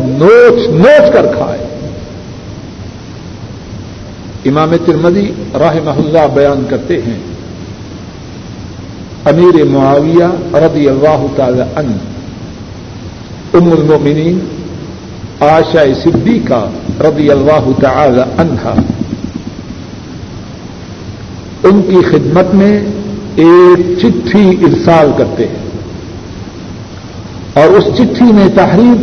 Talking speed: 80 wpm